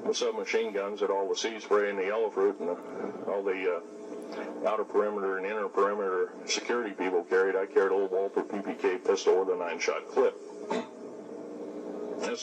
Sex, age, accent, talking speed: male, 50-69, American, 185 wpm